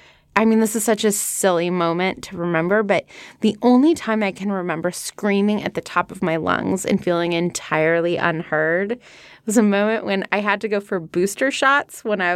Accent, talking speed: American, 200 wpm